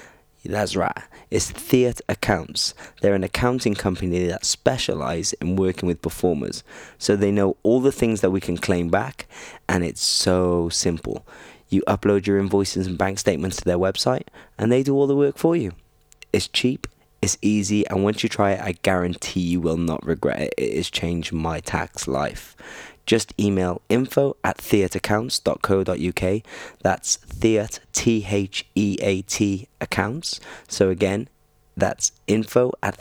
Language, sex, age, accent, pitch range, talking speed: English, male, 20-39, British, 90-110 Hz, 155 wpm